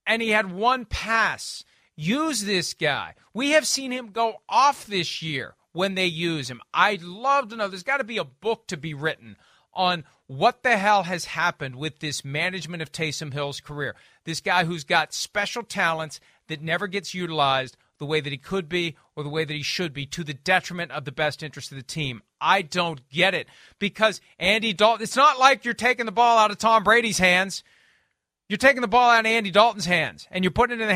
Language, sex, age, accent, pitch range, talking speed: English, male, 40-59, American, 150-215 Hz, 220 wpm